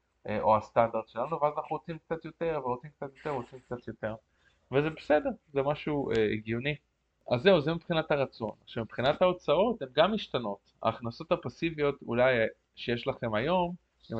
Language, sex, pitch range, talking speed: Hebrew, male, 110-150 Hz, 150 wpm